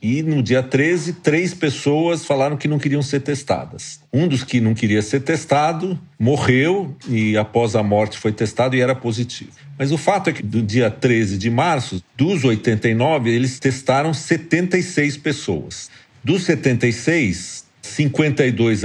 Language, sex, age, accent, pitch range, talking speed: Portuguese, male, 50-69, Brazilian, 115-165 Hz, 155 wpm